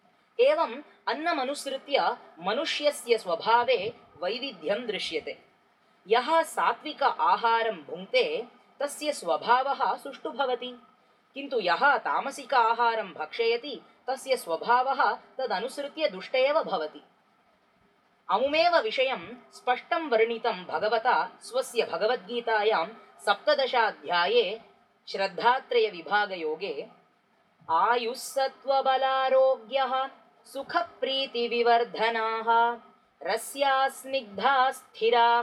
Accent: native